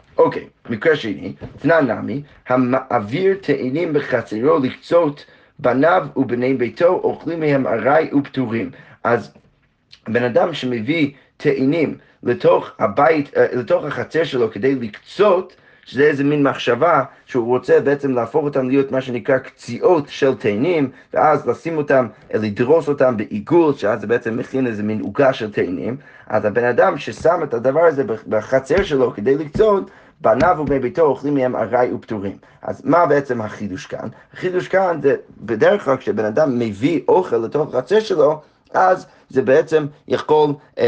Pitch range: 125-160 Hz